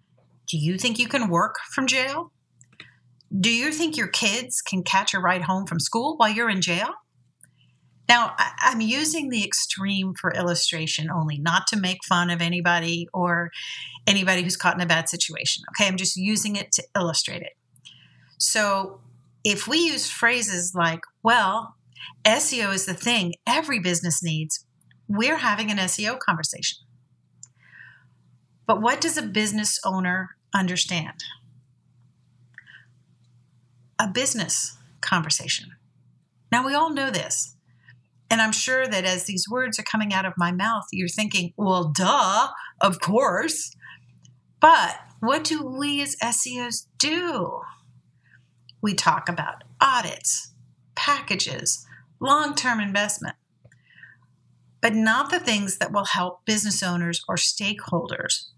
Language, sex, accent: English, female, American